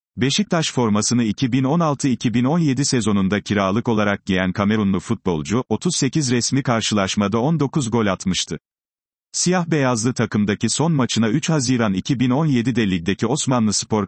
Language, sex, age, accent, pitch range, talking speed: Turkish, male, 40-59, native, 105-135 Hz, 105 wpm